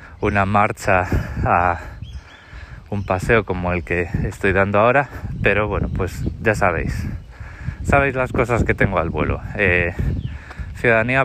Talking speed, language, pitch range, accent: 135 wpm, Spanish, 90-110 Hz, Spanish